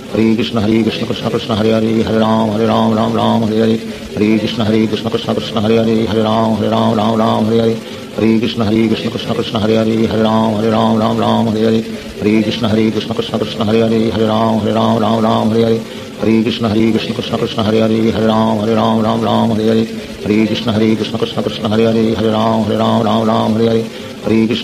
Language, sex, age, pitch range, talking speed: Portuguese, male, 50-69, 110-115 Hz, 60 wpm